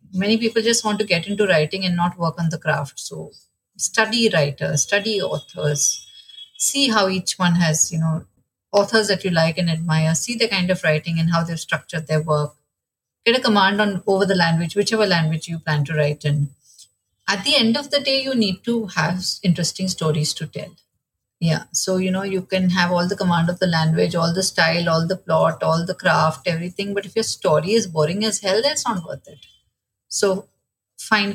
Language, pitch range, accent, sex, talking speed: Hindi, 160-200 Hz, native, female, 210 wpm